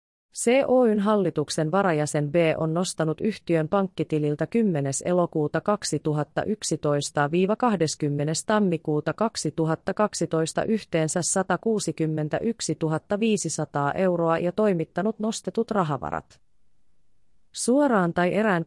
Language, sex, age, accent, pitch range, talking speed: Finnish, female, 30-49, native, 155-195 Hz, 75 wpm